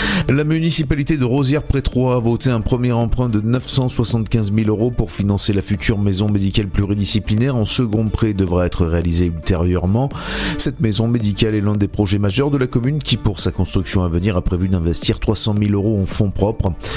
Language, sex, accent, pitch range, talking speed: French, male, French, 90-115 Hz, 185 wpm